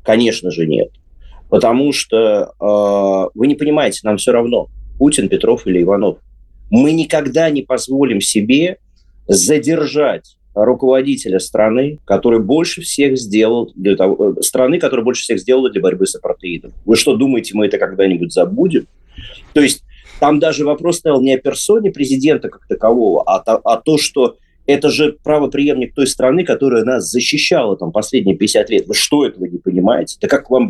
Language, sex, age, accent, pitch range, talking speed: Russian, male, 30-49, native, 115-170 Hz, 160 wpm